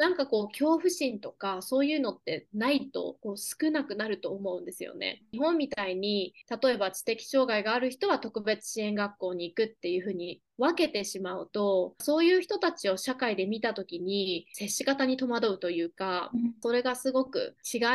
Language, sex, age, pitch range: Japanese, female, 20-39, 190-265 Hz